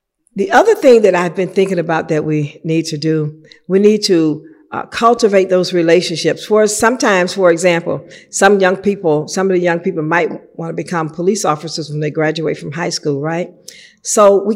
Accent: American